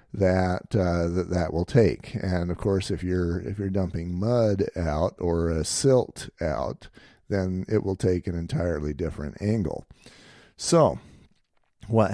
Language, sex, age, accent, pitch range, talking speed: English, male, 50-69, American, 85-105 Hz, 150 wpm